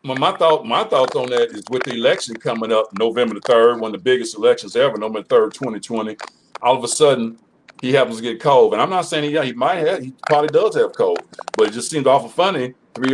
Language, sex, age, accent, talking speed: English, male, 50-69, American, 245 wpm